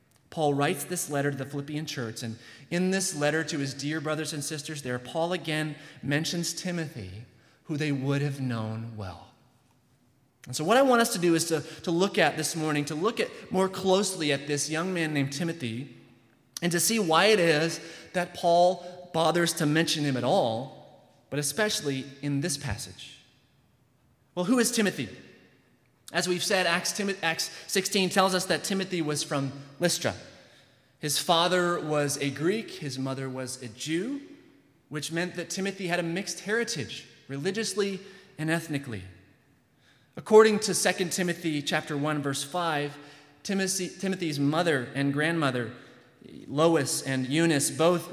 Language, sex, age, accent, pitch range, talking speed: English, male, 30-49, American, 135-175 Hz, 155 wpm